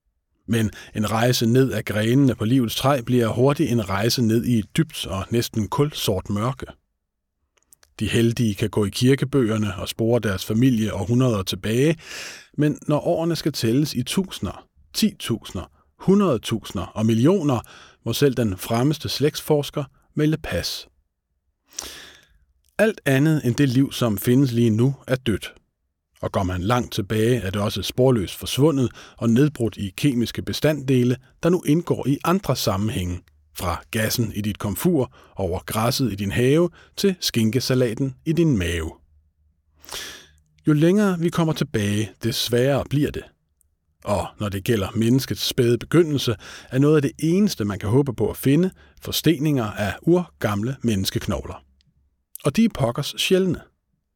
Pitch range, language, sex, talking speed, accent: 100-140 Hz, Danish, male, 145 wpm, native